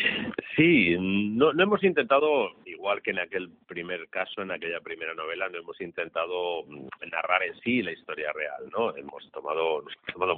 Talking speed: 175 wpm